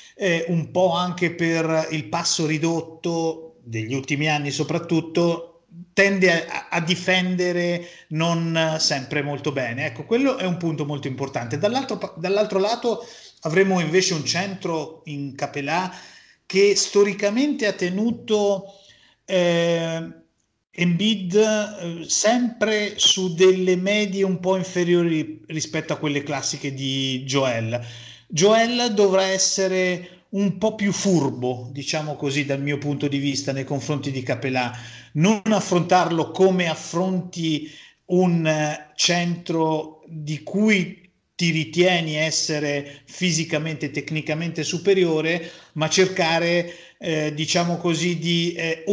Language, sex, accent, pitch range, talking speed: Italian, male, native, 150-185 Hz, 115 wpm